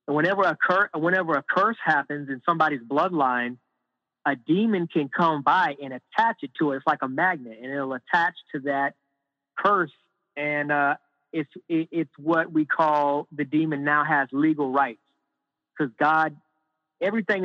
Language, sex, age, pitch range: English, male, 30-49, 130-155 Hz